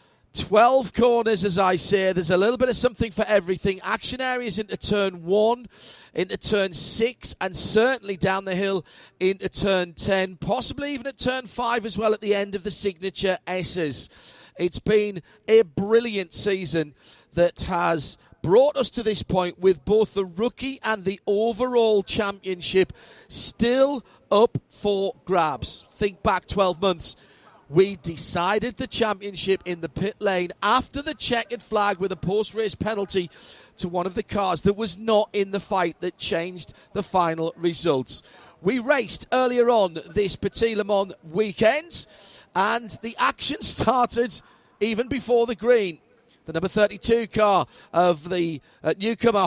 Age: 40-59